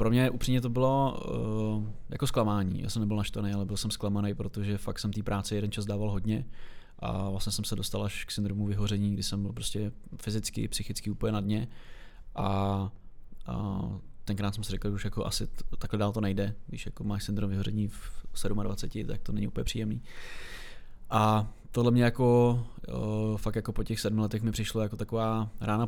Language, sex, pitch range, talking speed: Czech, male, 100-110 Hz, 190 wpm